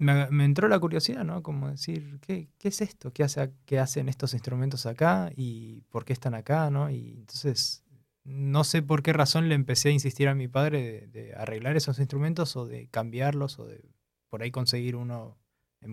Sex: male